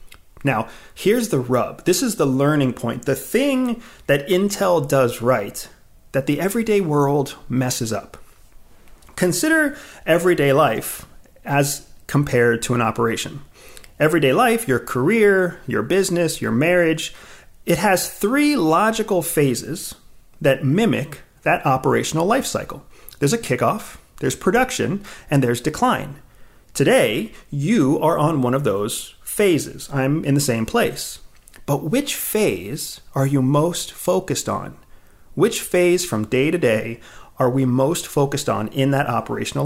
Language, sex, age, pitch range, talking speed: English, male, 30-49, 130-190 Hz, 140 wpm